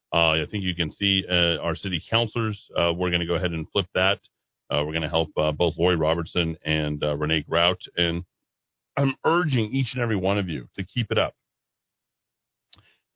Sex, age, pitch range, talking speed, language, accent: male, 40-59, 85-130 Hz, 210 wpm, English, American